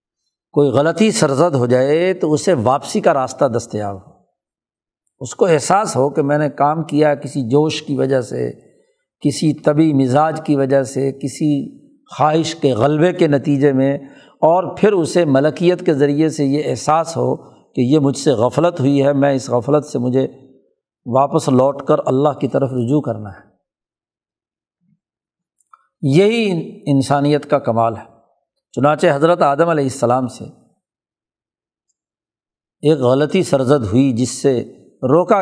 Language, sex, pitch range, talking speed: Urdu, male, 135-155 Hz, 150 wpm